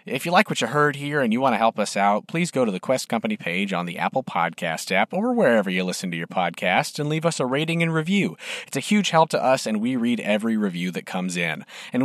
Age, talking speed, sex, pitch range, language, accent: 40-59, 275 wpm, male, 120-175 Hz, English, American